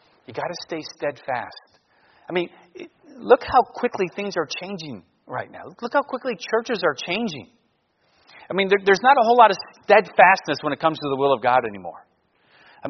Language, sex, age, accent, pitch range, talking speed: English, male, 40-59, American, 155-225 Hz, 185 wpm